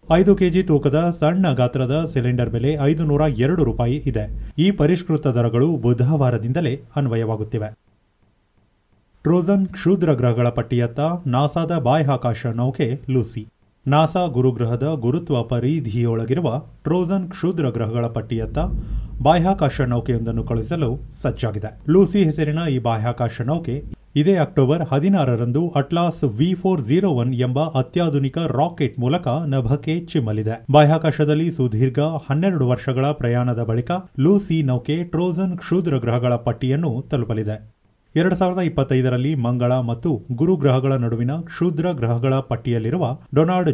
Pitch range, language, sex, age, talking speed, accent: 120-160 Hz, Kannada, male, 30-49, 105 wpm, native